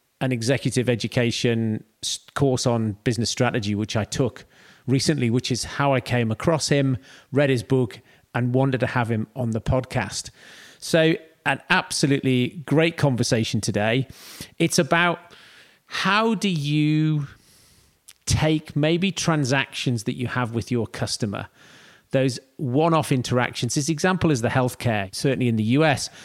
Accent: British